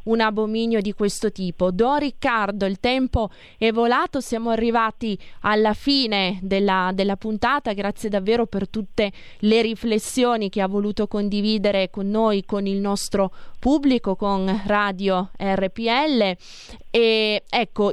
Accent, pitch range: native, 195-230 Hz